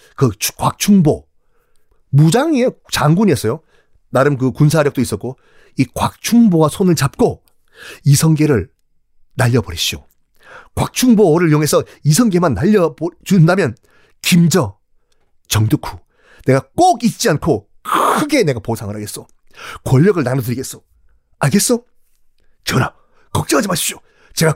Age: 30-49